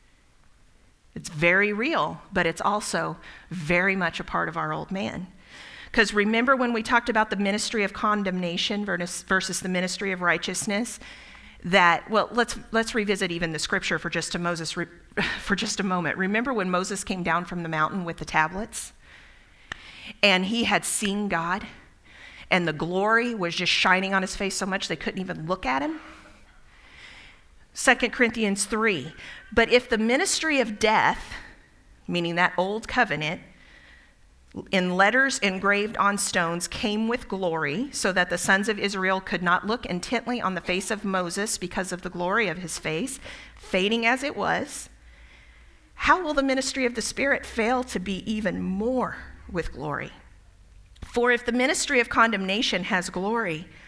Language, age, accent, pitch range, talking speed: English, 40-59, American, 175-225 Hz, 165 wpm